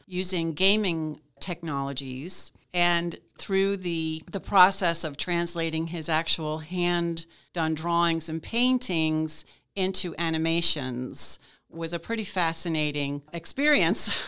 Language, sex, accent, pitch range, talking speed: English, female, American, 155-190 Hz, 95 wpm